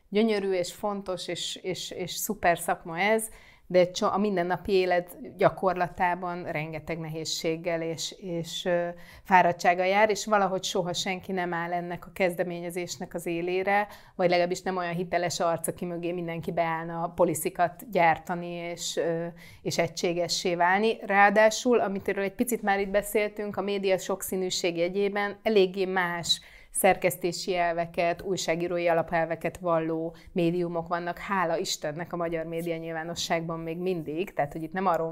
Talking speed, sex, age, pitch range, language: 140 wpm, female, 30-49, 170-195 Hz, Hungarian